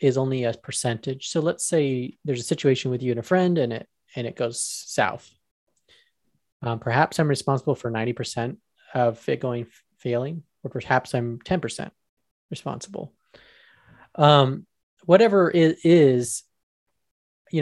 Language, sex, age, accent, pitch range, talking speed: English, male, 20-39, American, 120-150 Hz, 150 wpm